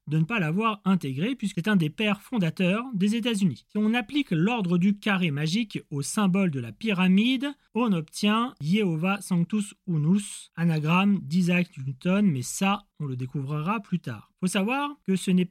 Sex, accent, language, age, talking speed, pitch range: male, French, French, 30-49, 190 wpm, 170-225 Hz